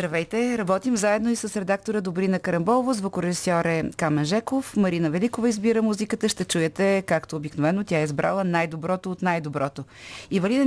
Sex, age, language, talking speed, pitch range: female, 30-49, Bulgarian, 145 wpm, 150-195 Hz